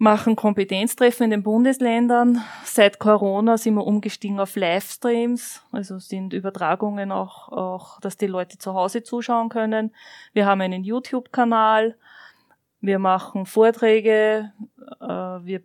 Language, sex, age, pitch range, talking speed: German, female, 20-39, 195-225 Hz, 125 wpm